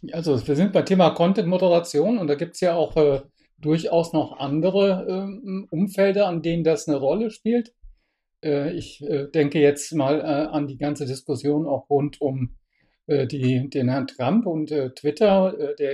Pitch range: 145-180 Hz